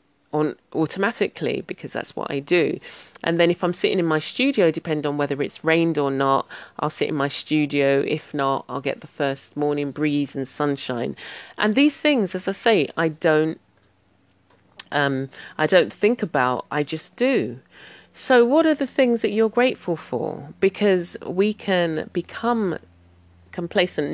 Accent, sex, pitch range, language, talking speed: British, female, 130-170 Hz, English, 165 wpm